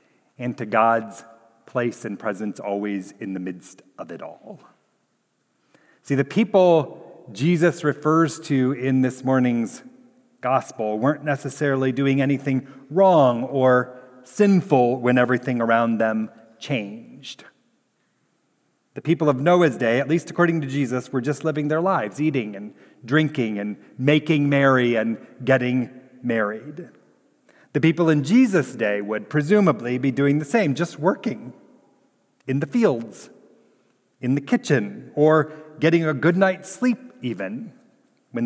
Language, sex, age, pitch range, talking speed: English, male, 40-59, 120-160 Hz, 135 wpm